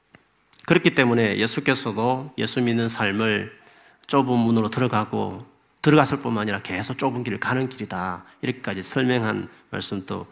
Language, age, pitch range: Korean, 40-59, 115-180 Hz